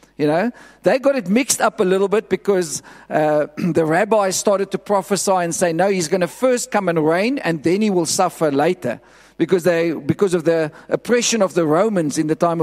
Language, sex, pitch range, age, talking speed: English, male, 175-225 Hz, 50-69, 215 wpm